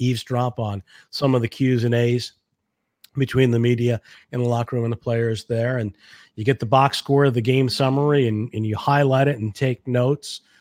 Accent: American